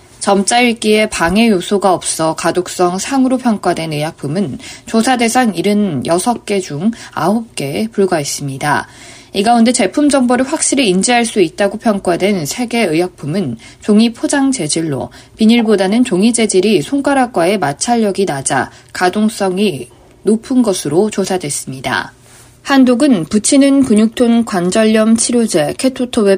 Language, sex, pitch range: Korean, female, 175-240 Hz